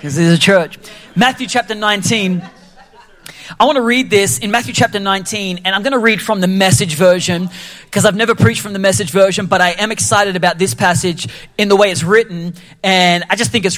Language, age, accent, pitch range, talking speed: English, 30-49, Australian, 180-220 Hz, 220 wpm